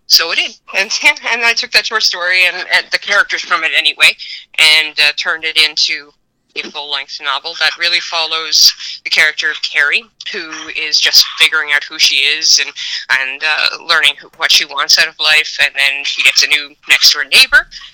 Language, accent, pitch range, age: English, American, 155-170 Hz, 20-39